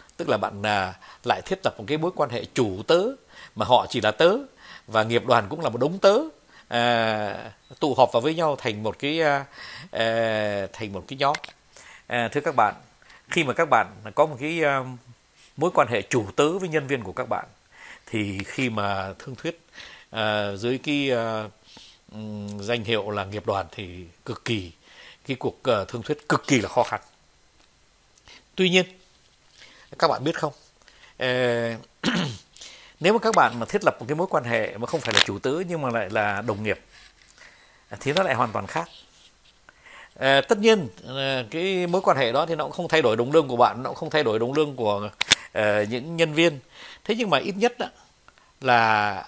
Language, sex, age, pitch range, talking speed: Vietnamese, male, 60-79, 110-160 Hz, 190 wpm